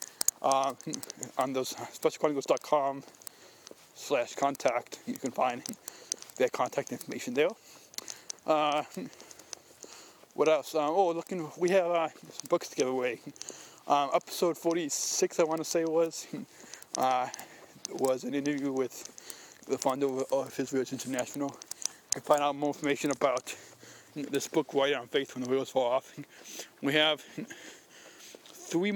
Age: 20-39